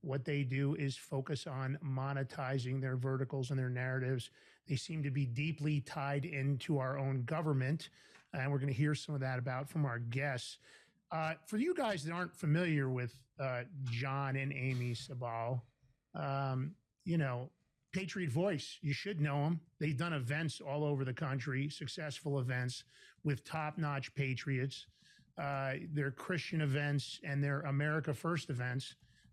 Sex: male